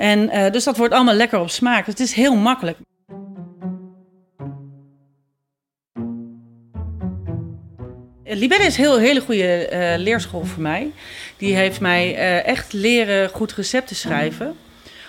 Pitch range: 175-235 Hz